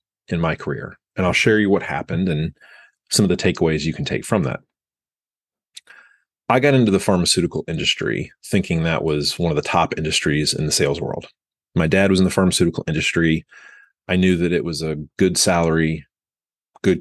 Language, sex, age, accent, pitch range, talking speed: English, male, 30-49, American, 80-95 Hz, 185 wpm